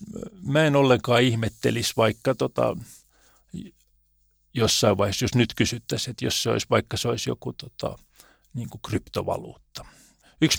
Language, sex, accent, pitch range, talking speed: Finnish, male, native, 105-130 Hz, 130 wpm